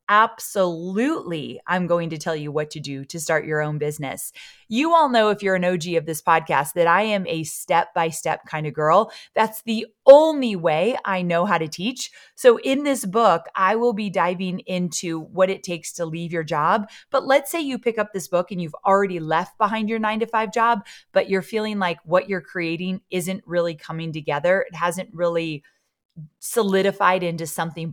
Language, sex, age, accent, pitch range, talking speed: English, female, 30-49, American, 165-225 Hz, 195 wpm